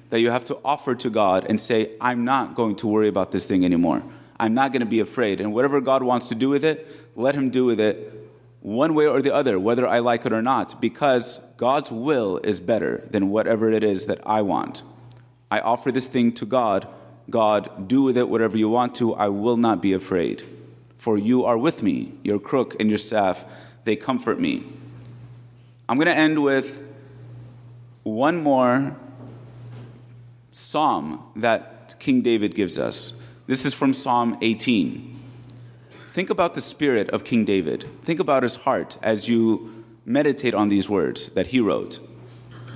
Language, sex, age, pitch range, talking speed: English, male, 30-49, 110-130 Hz, 180 wpm